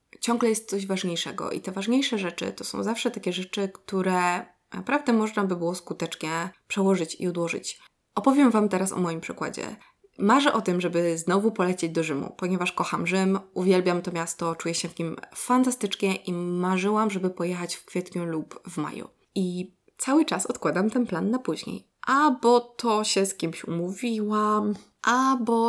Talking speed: 170 wpm